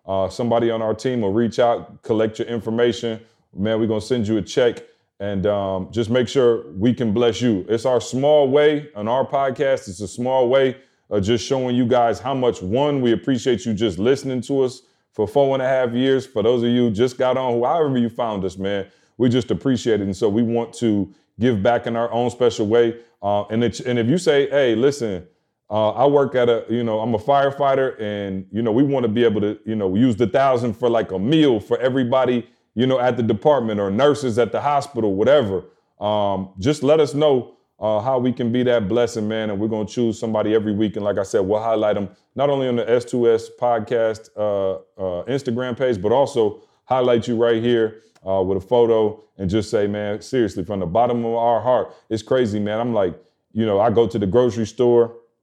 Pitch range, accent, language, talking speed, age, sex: 110-125 Hz, American, English, 225 wpm, 30-49, male